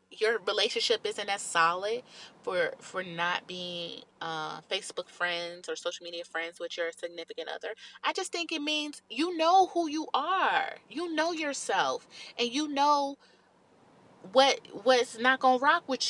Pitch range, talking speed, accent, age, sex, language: 205-300 Hz, 160 wpm, American, 30-49, female, English